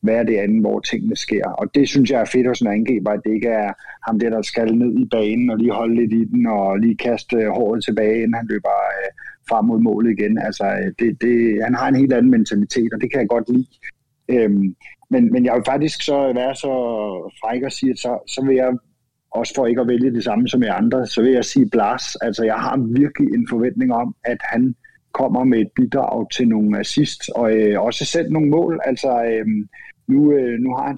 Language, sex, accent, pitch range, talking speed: Danish, male, native, 110-130 Hz, 230 wpm